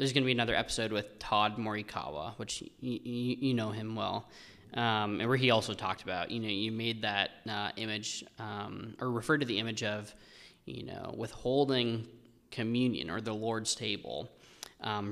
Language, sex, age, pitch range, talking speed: English, male, 20-39, 105-125 Hz, 175 wpm